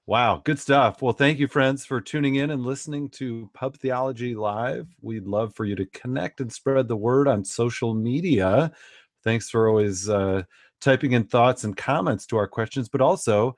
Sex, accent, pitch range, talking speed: male, American, 110-140 Hz, 190 wpm